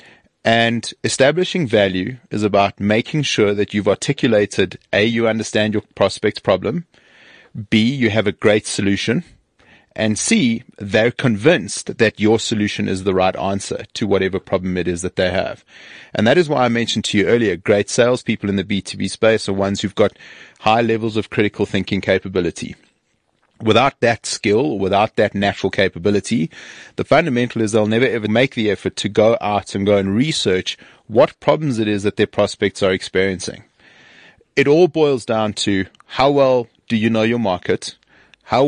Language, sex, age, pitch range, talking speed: English, male, 30-49, 100-120 Hz, 170 wpm